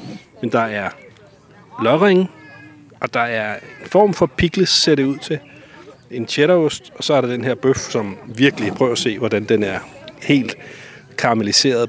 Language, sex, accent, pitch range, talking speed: Danish, male, native, 110-145 Hz, 170 wpm